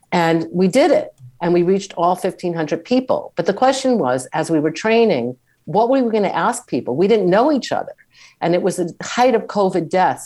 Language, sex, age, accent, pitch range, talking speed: English, female, 50-69, American, 150-205 Hz, 220 wpm